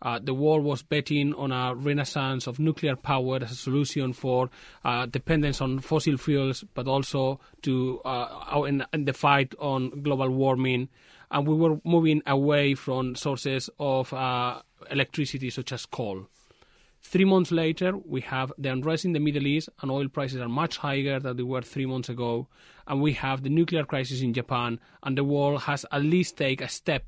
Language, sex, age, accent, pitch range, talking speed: English, male, 30-49, Spanish, 125-150 Hz, 185 wpm